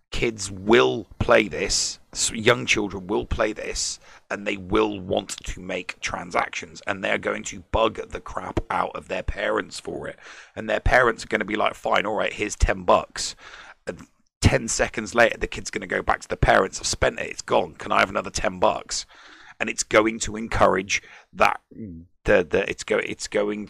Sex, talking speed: male, 205 wpm